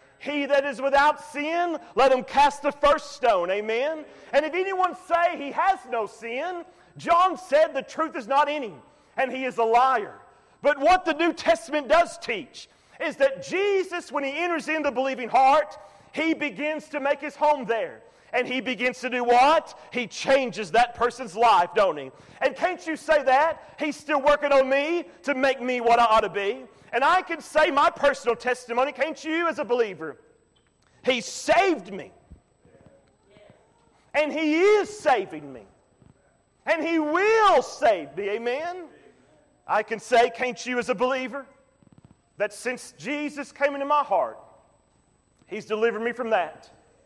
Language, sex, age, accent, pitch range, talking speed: English, male, 40-59, American, 250-310 Hz, 170 wpm